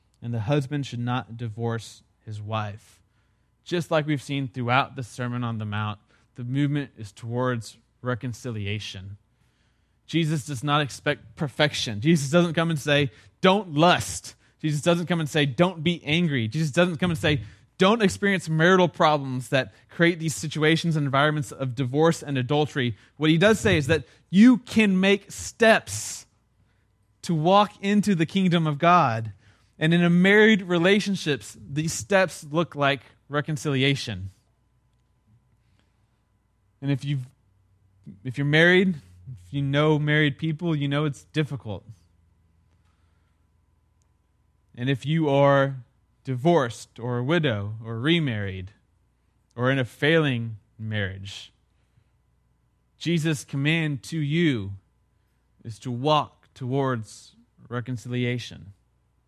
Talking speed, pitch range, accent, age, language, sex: 130 wpm, 110-155 Hz, American, 20-39, English, male